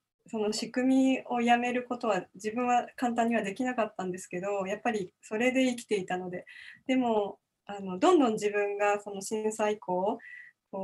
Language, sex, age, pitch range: Japanese, female, 20-39, 200-270 Hz